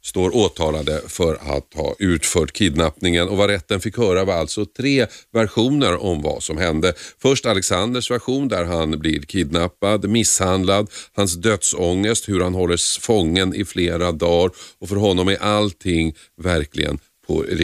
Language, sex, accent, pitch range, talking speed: Swedish, male, native, 80-105 Hz, 145 wpm